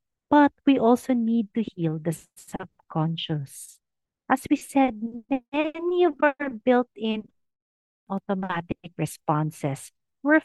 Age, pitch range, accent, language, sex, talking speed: 50-69, 170-255 Hz, Filipino, English, female, 105 wpm